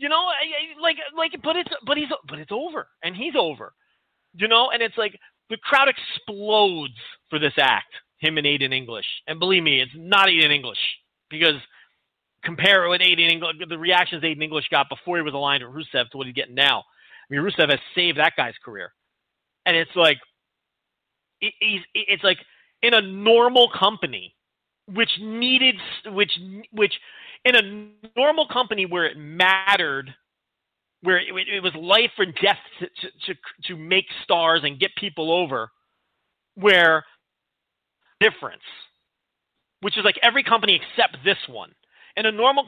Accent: American